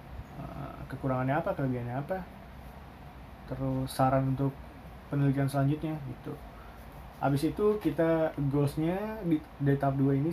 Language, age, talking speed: Indonesian, 20-39, 110 wpm